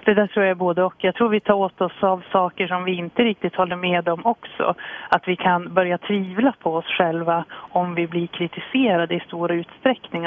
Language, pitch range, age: Swedish, 170-200 Hz, 30-49